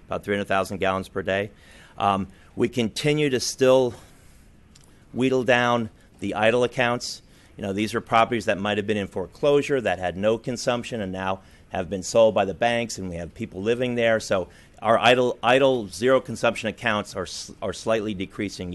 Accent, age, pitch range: American, 30-49, 95-120 Hz